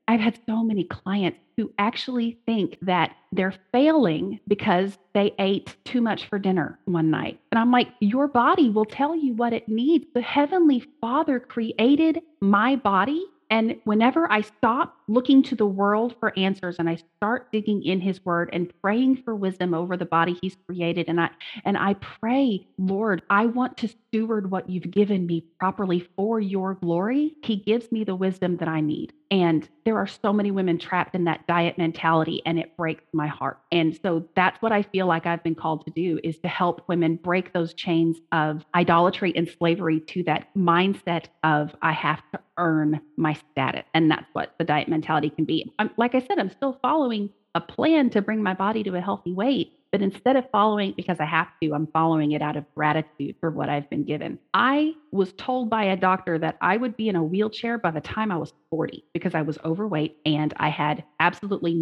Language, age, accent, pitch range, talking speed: English, 30-49, American, 165-225 Hz, 205 wpm